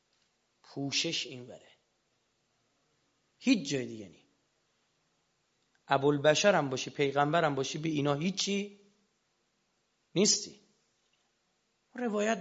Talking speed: 85 wpm